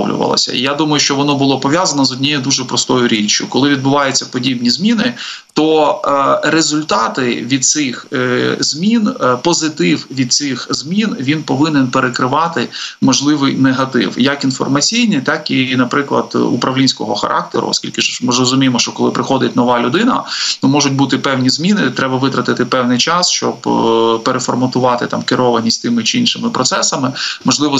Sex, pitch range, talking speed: male, 125-150 Hz, 135 wpm